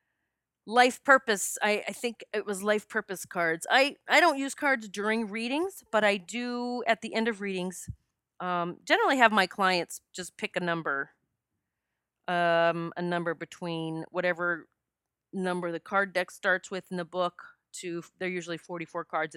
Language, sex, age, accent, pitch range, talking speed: English, female, 30-49, American, 170-225 Hz, 165 wpm